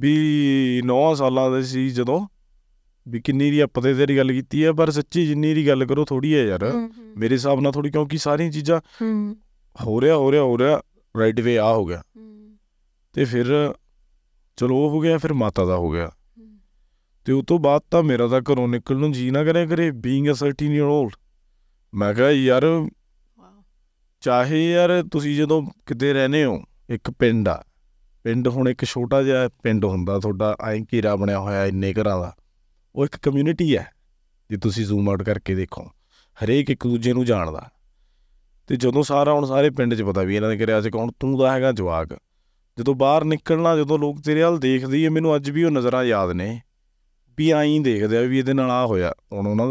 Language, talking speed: Punjabi, 185 wpm